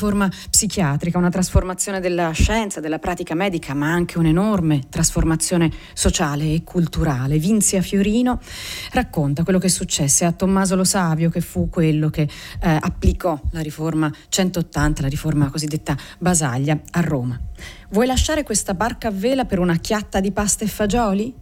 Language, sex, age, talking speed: Italian, female, 40-59, 155 wpm